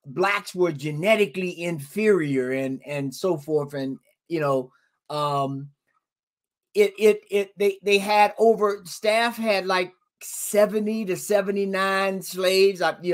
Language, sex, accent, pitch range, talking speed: English, male, American, 155-220 Hz, 125 wpm